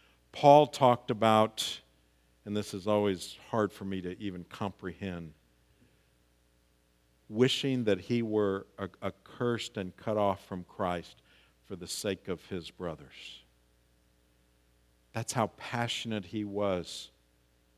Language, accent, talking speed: English, American, 115 wpm